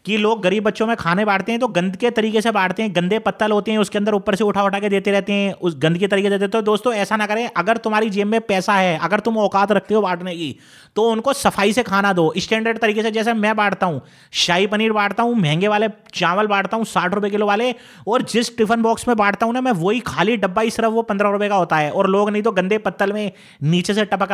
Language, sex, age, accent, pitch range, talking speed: Hindi, male, 30-49, native, 190-225 Hz, 270 wpm